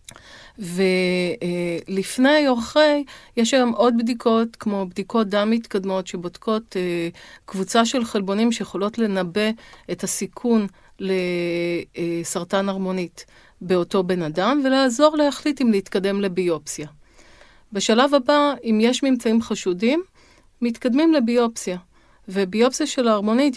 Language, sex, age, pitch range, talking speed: Hebrew, female, 40-59, 185-235 Hz, 100 wpm